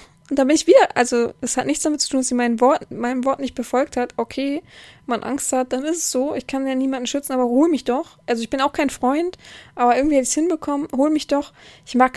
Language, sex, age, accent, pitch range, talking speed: German, female, 20-39, German, 240-280 Hz, 275 wpm